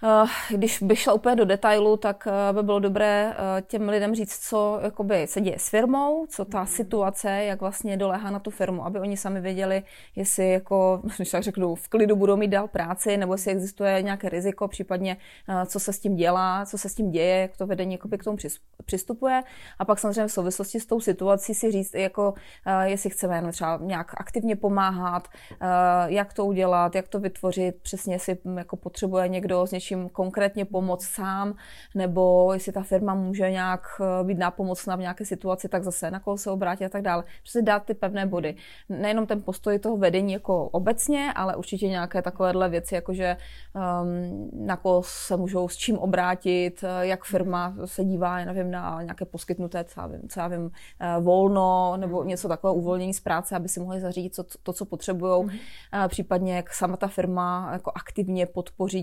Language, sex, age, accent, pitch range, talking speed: Czech, female, 30-49, native, 180-200 Hz, 180 wpm